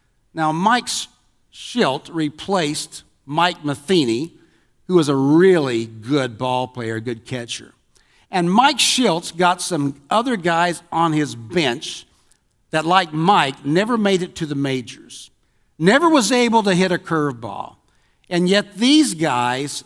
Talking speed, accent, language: 135 wpm, American, English